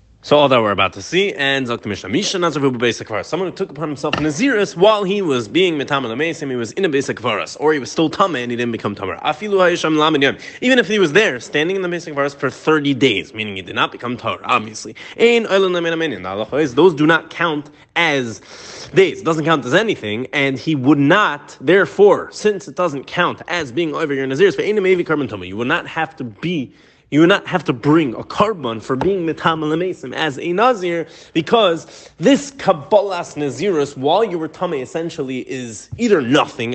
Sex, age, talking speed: male, 20-39, 185 wpm